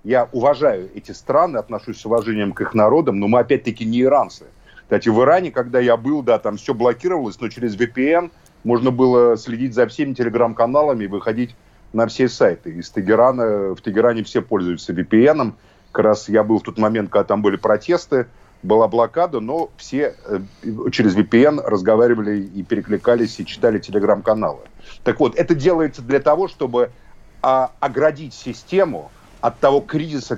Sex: male